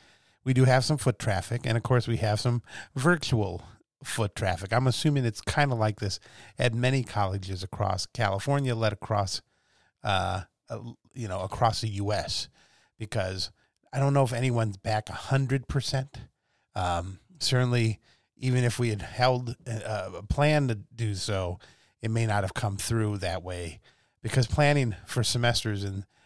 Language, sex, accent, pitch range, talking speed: English, male, American, 105-125 Hz, 160 wpm